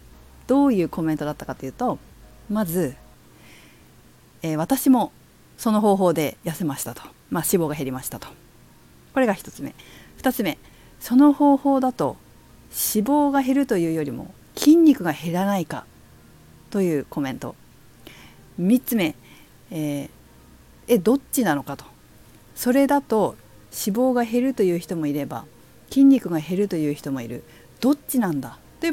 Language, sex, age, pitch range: Japanese, female, 50-69, 150-245 Hz